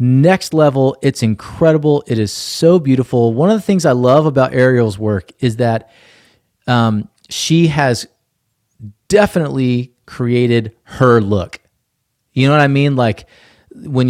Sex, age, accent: male, 30-49, American